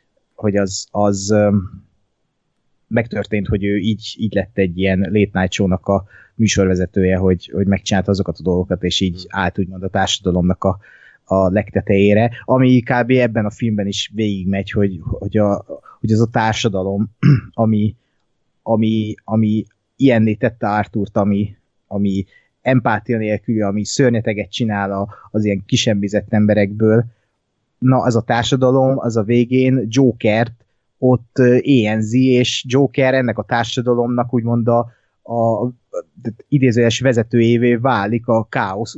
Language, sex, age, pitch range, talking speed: Hungarian, male, 20-39, 100-120 Hz, 130 wpm